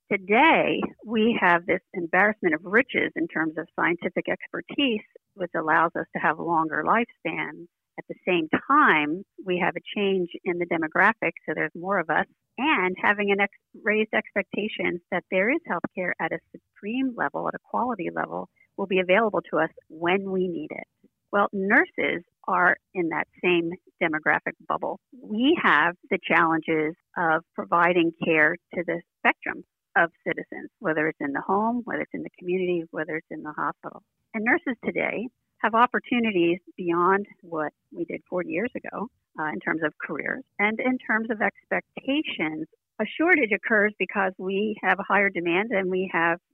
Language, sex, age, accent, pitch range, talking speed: English, female, 50-69, American, 170-225 Hz, 170 wpm